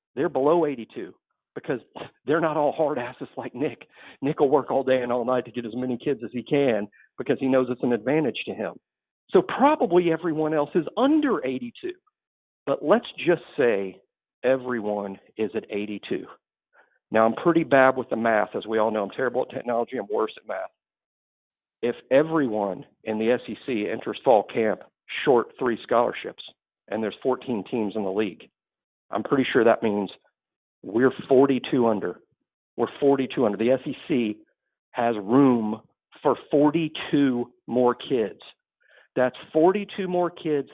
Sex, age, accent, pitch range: male, 50-69, American, 120-155 Hz